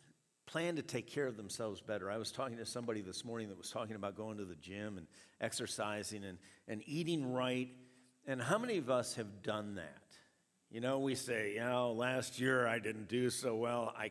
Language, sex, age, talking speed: English, male, 50-69, 215 wpm